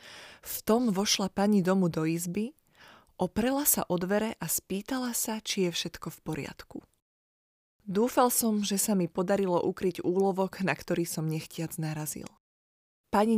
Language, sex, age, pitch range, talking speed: Slovak, female, 20-39, 170-215 Hz, 150 wpm